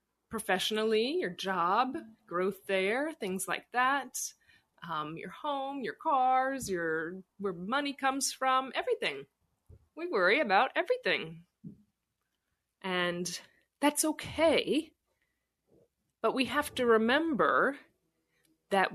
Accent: American